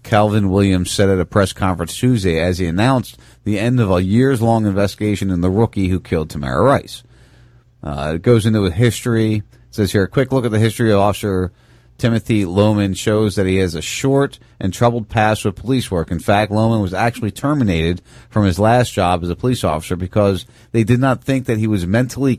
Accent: American